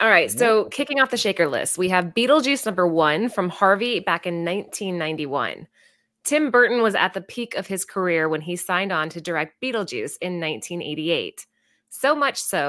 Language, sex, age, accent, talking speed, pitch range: English, female, 20-39, American, 185 wpm, 175-230 Hz